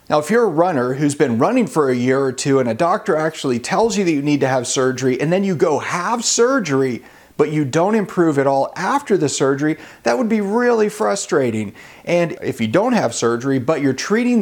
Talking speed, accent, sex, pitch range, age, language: 225 wpm, American, male, 125-160 Hz, 40-59, English